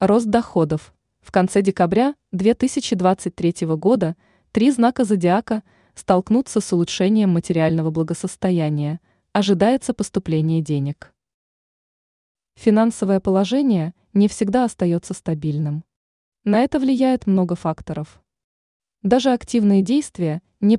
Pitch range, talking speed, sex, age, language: 170-225 Hz, 95 wpm, female, 20-39, Russian